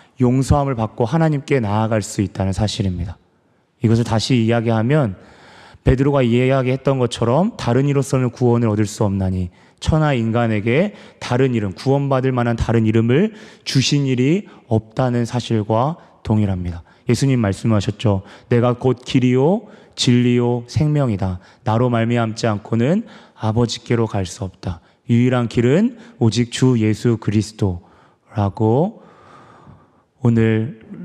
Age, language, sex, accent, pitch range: 30-49, Korean, male, native, 105-130 Hz